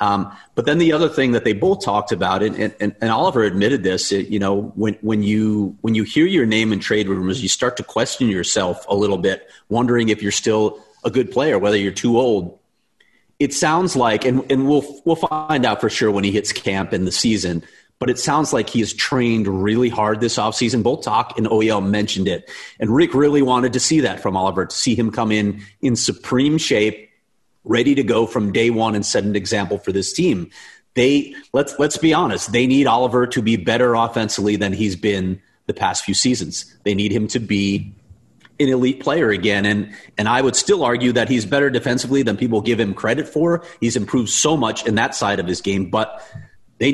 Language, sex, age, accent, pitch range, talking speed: English, male, 30-49, American, 105-130 Hz, 220 wpm